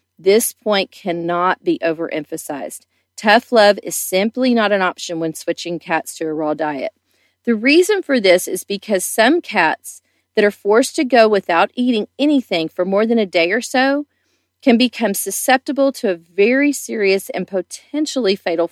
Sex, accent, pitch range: female, American, 175-240 Hz